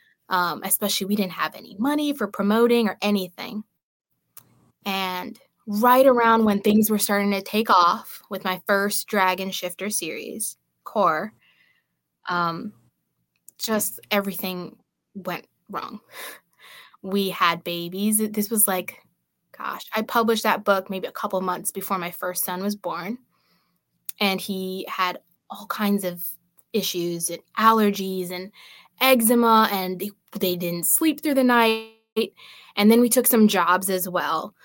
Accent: American